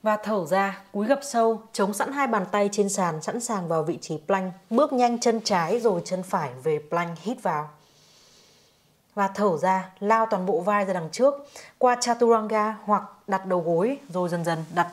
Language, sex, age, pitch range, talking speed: Vietnamese, female, 20-39, 175-220 Hz, 200 wpm